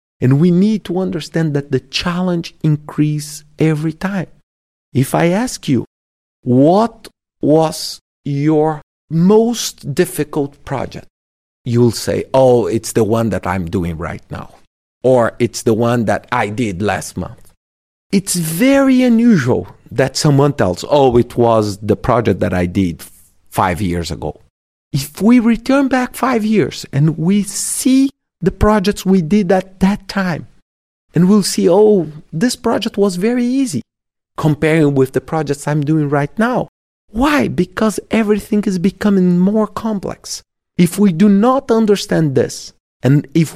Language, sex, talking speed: English, male, 145 wpm